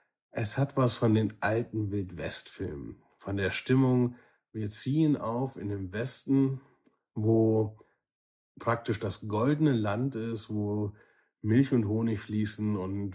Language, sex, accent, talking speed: German, male, German, 130 wpm